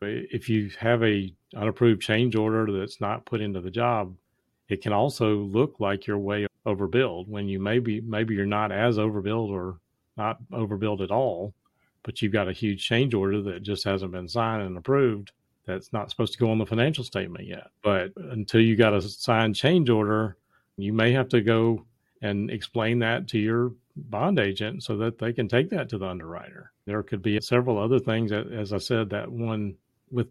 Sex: male